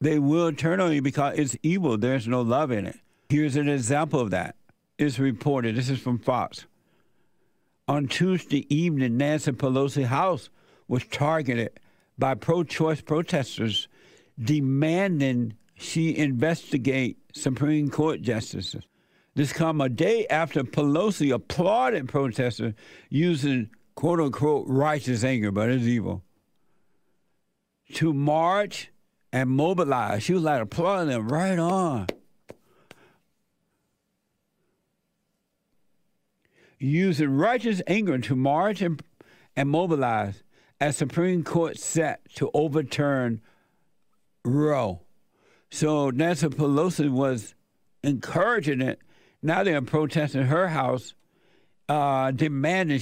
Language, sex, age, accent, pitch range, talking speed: English, male, 60-79, American, 130-160 Hz, 110 wpm